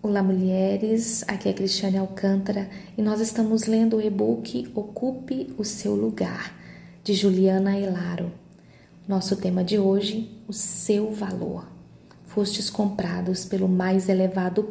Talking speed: 125 wpm